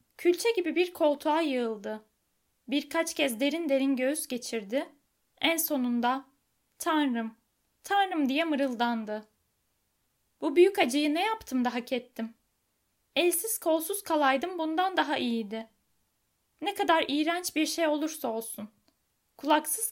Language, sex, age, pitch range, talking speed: Turkish, female, 10-29, 260-345 Hz, 120 wpm